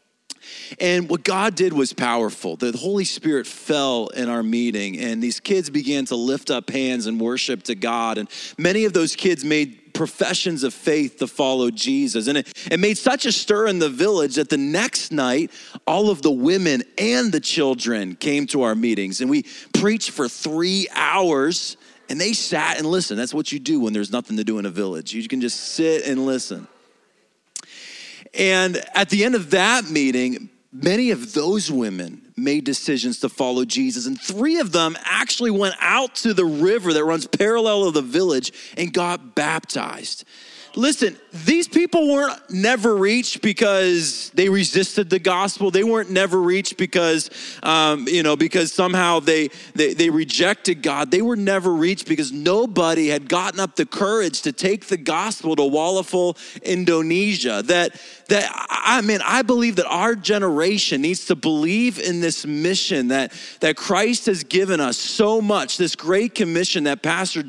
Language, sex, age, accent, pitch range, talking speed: English, male, 30-49, American, 150-215 Hz, 175 wpm